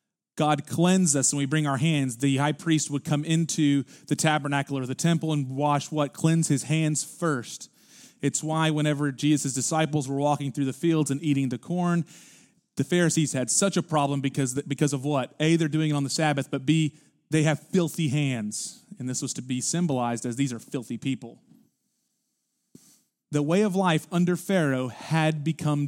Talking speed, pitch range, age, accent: 190 wpm, 140-165 Hz, 30-49, American